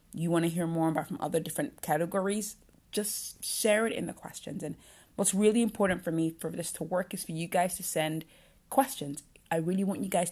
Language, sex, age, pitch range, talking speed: English, female, 30-49, 160-200 Hz, 220 wpm